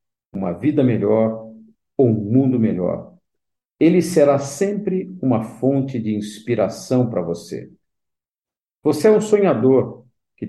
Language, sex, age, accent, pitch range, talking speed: Portuguese, male, 50-69, Brazilian, 110-155 Hz, 120 wpm